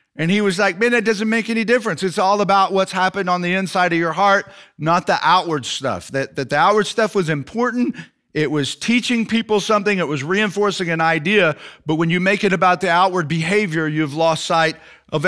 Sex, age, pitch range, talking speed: male, 50-69, 175-235 Hz, 215 wpm